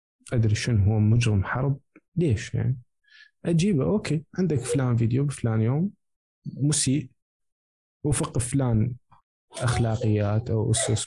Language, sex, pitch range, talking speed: Arabic, male, 110-140 Hz, 110 wpm